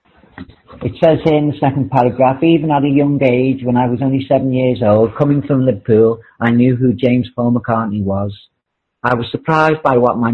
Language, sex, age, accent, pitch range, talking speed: English, male, 40-59, British, 110-125 Hz, 205 wpm